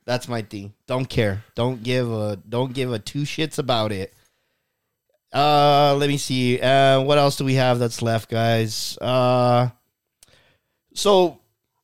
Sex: male